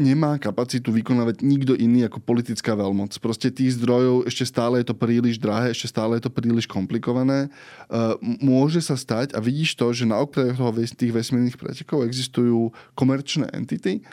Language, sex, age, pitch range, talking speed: Slovak, male, 10-29, 115-135 Hz, 160 wpm